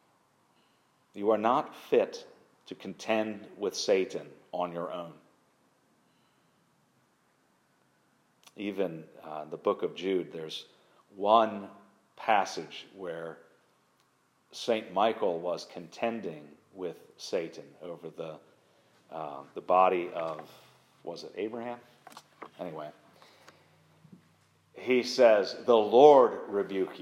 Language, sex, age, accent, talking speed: English, male, 40-59, American, 95 wpm